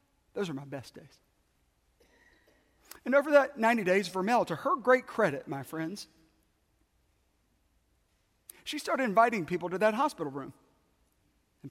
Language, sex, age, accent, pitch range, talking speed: English, male, 40-59, American, 140-210 Hz, 135 wpm